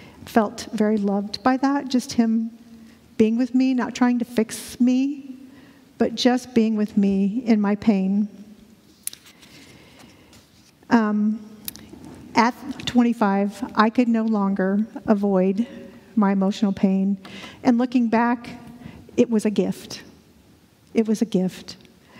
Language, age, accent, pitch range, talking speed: English, 50-69, American, 215-260 Hz, 120 wpm